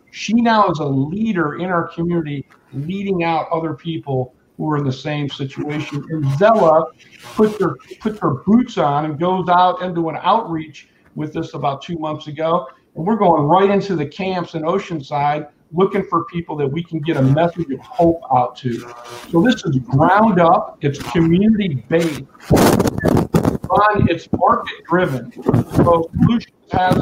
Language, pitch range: English, 140-175 Hz